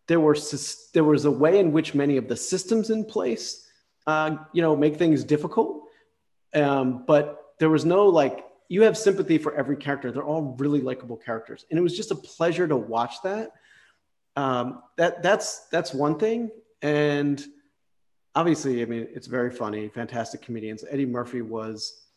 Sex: male